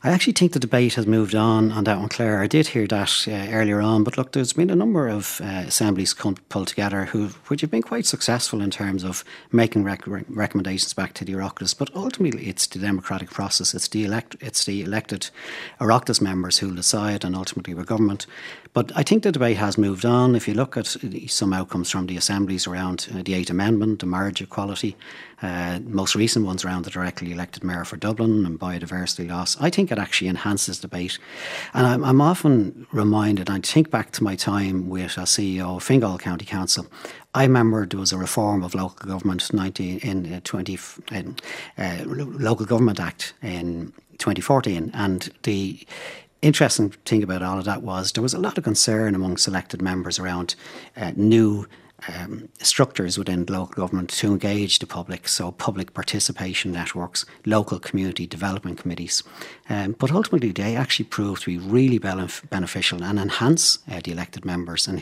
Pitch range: 90-110 Hz